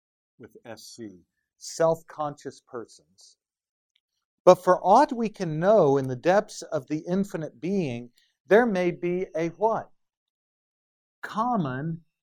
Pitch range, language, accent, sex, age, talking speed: 150-205 Hz, English, American, male, 50-69, 115 wpm